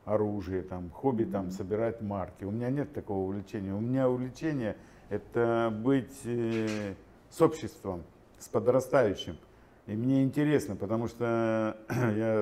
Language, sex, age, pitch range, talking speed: Russian, male, 50-69, 105-125 Hz, 130 wpm